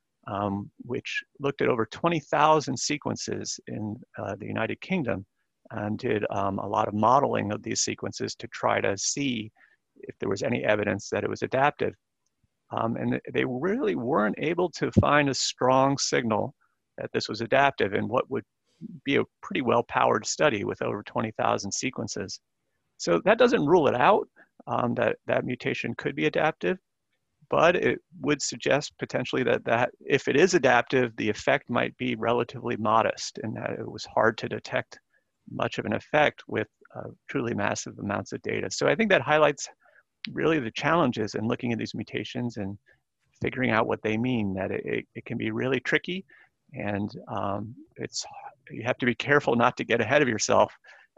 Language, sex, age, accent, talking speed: English, male, 40-59, American, 175 wpm